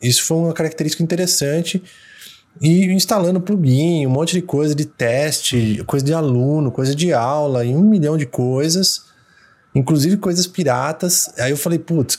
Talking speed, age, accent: 160 wpm, 20-39, Brazilian